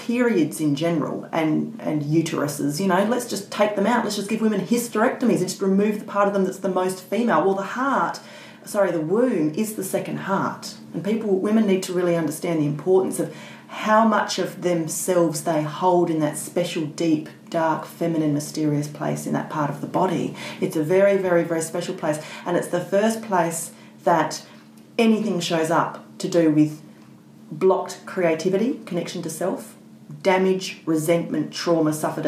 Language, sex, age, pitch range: English, female, 30-49, 155-190 Hz